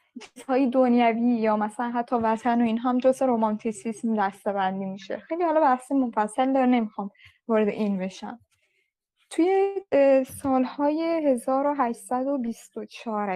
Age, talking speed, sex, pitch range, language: 10-29, 110 wpm, female, 220-270 Hz, Persian